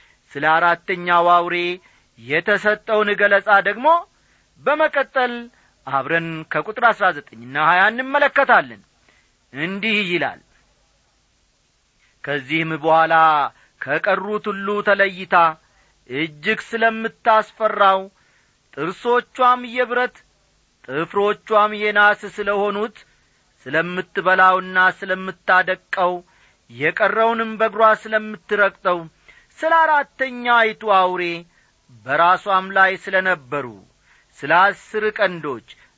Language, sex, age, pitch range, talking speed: Amharic, male, 40-59, 175-225 Hz, 65 wpm